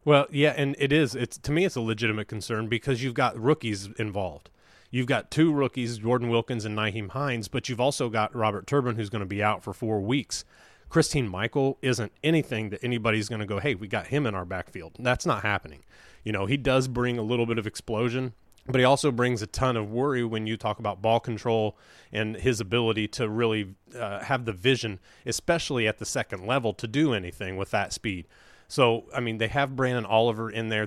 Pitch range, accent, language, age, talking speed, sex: 110-130 Hz, American, English, 30-49, 220 wpm, male